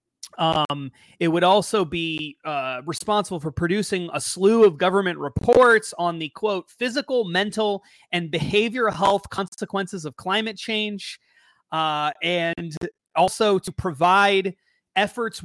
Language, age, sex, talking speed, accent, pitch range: English, 30-49, male, 120 wpm, American, 170-205 Hz